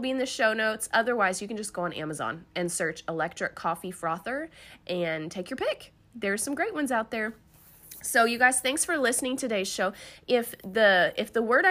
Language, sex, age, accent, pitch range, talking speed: English, female, 30-49, American, 180-250 Hz, 205 wpm